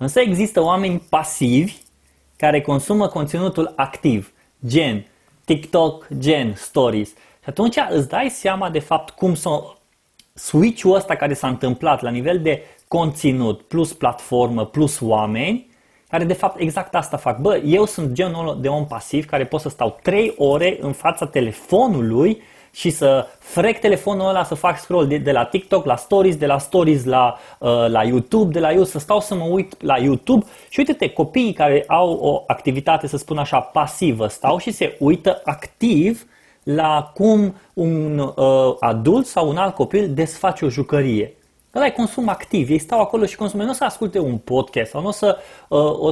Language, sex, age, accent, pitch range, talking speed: Romanian, male, 20-39, native, 135-190 Hz, 175 wpm